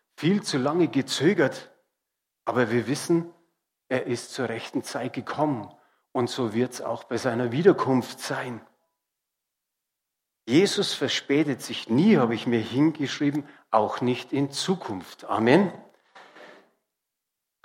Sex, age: male, 50-69